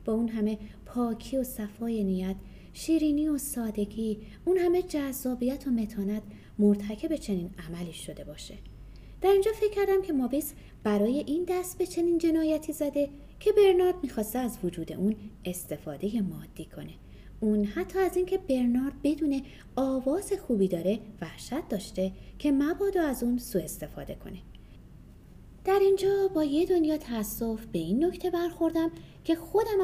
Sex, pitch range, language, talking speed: female, 205-330 Hz, Persian, 145 wpm